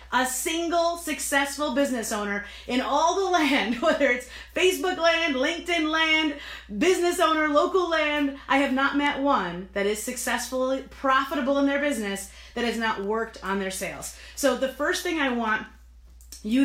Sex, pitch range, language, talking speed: female, 230-295 Hz, English, 160 wpm